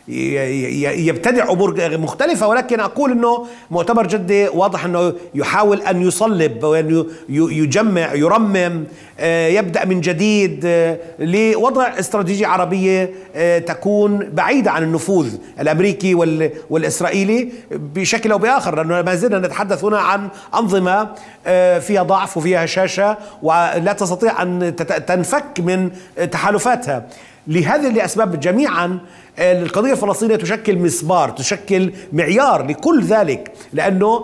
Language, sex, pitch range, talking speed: Arabic, male, 170-215 Hz, 105 wpm